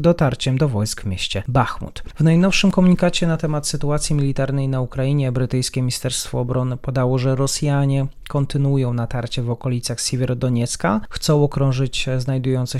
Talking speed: 135 wpm